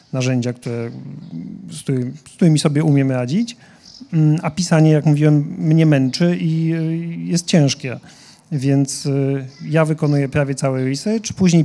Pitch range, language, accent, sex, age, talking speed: 130-160 Hz, Polish, native, male, 40-59, 120 wpm